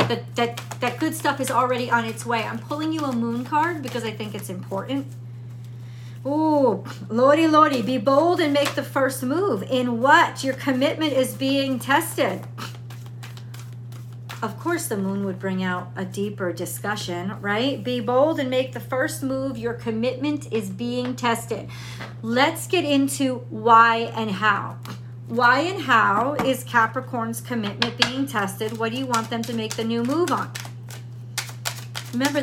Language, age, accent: English, 40-59, American